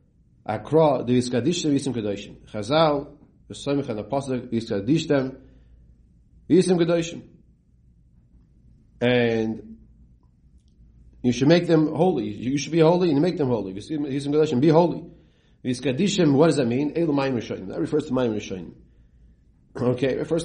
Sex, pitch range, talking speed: male, 105-155 Hz, 135 wpm